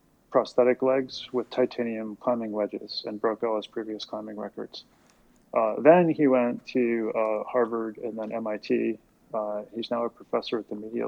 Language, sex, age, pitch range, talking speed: English, male, 30-49, 110-120 Hz, 170 wpm